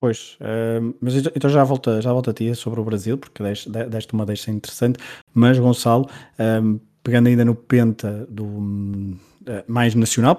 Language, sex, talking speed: Portuguese, male, 160 wpm